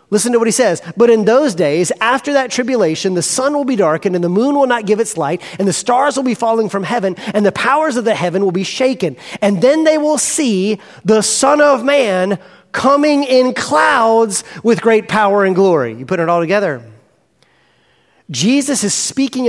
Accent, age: American, 40-59